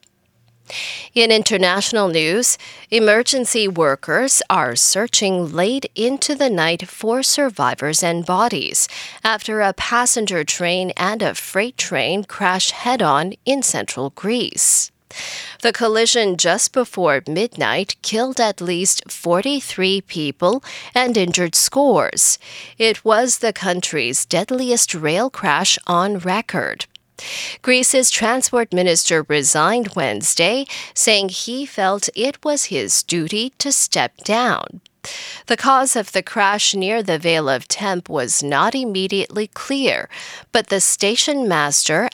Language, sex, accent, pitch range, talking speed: English, female, American, 180-245 Hz, 120 wpm